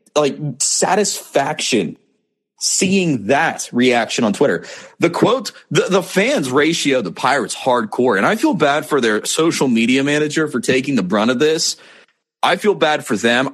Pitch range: 130-200 Hz